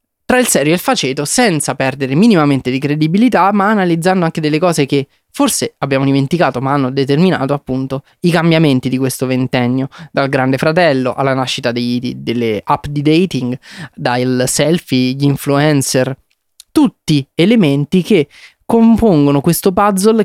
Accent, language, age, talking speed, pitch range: native, Italian, 20-39, 140 wpm, 130-160 Hz